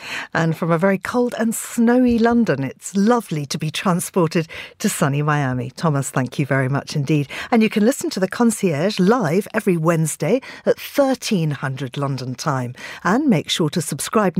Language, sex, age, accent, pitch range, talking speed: English, female, 50-69, British, 150-205 Hz, 170 wpm